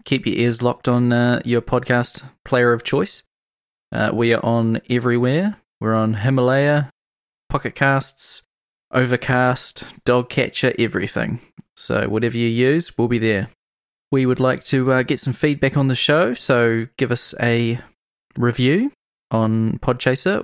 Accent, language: Australian, English